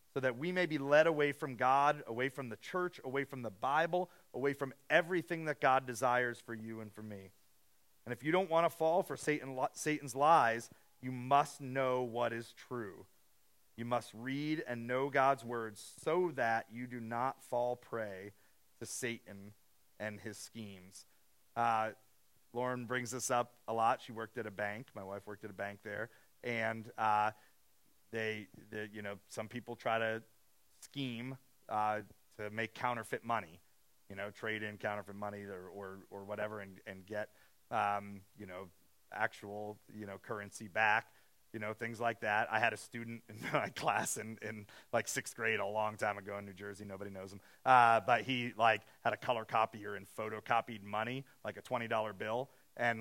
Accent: American